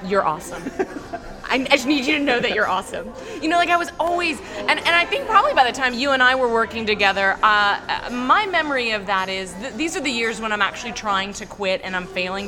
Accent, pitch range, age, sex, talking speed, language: American, 200-250 Hz, 20-39, female, 245 wpm, English